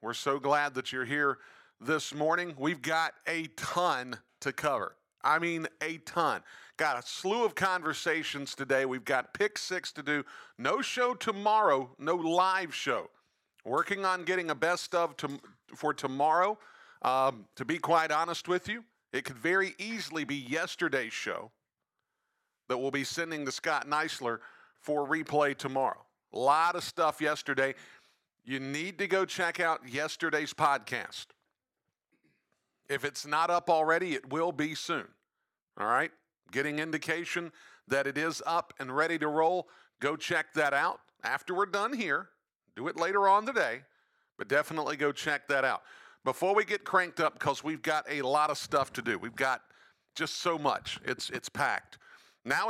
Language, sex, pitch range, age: English, male, 145-180 Hz, 50-69